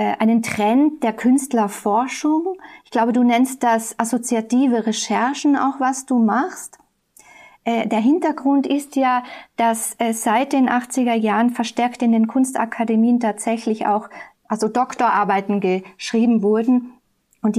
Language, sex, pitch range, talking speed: German, female, 220-255 Hz, 115 wpm